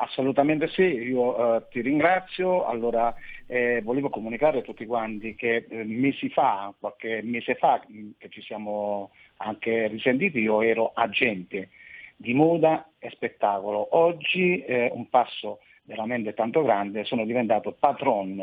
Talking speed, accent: 135 wpm, native